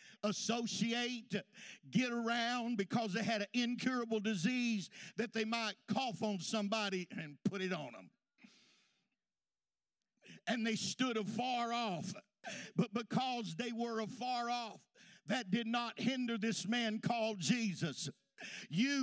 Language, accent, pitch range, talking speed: English, American, 210-245 Hz, 125 wpm